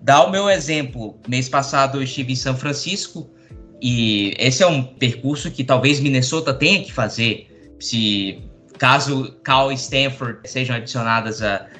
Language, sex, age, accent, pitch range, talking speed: Portuguese, male, 20-39, Brazilian, 120-145 Hz, 155 wpm